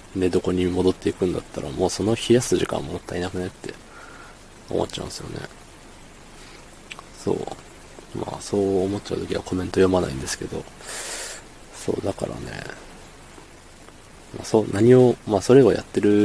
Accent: native